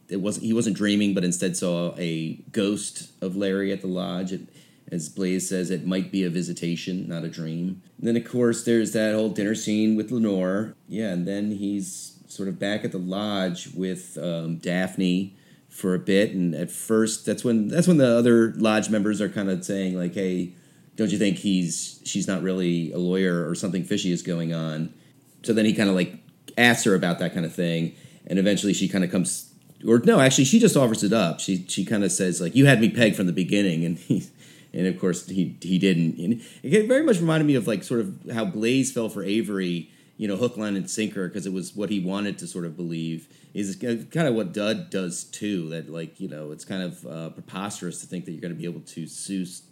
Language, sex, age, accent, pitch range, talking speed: English, male, 30-49, American, 90-105 Hz, 230 wpm